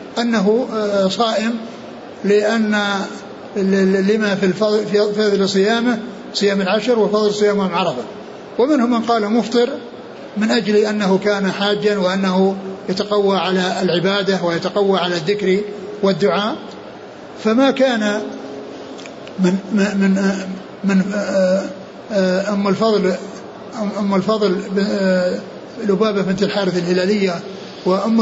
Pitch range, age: 190-215 Hz, 60-79